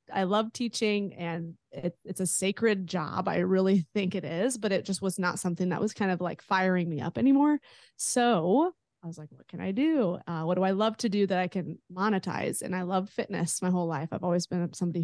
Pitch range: 175-215 Hz